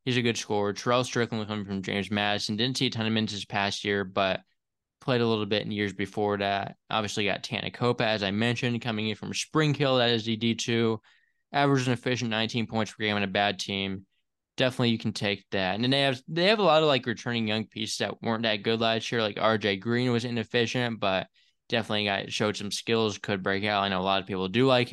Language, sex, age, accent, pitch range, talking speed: English, male, 20-39, American, 100-120 Hz, 245 wpm